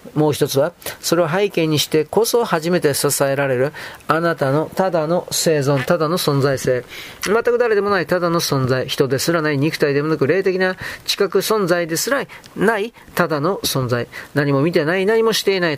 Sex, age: male, 40-59